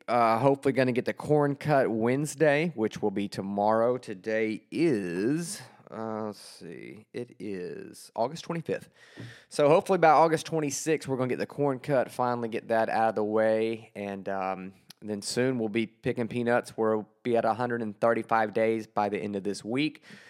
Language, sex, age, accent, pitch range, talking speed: English, male, 20-39, American, 105-125 Hz, 180 wpm